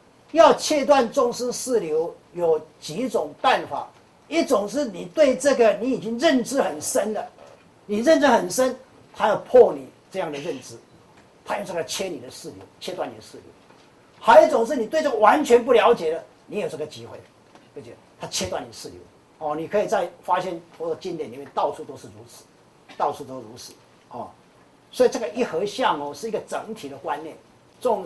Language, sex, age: Chinese, male, 40-59